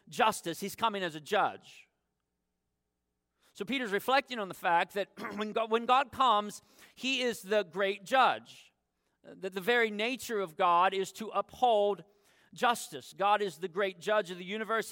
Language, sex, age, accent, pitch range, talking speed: English, male, 40-59, American, 155-205 Hz, 165 wpm